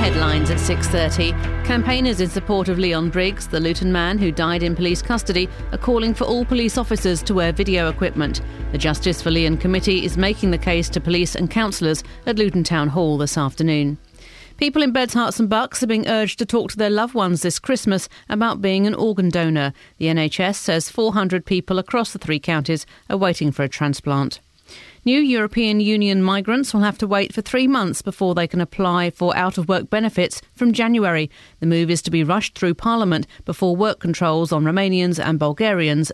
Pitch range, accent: 165-220 Hz, British